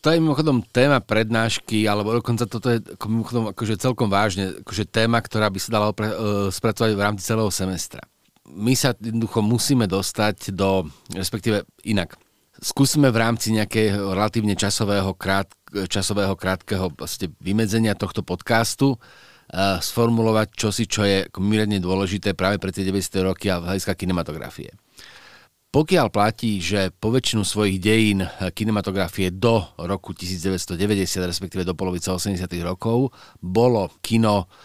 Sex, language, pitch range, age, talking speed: male, Slovak, 95-115 Hz, 40-59, 135 wpm